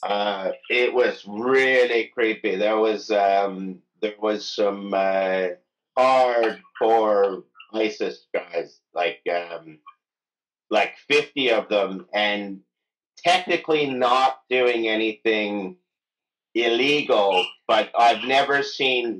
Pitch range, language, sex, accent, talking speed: 110-155 Hz, English, male, American, 95 wpm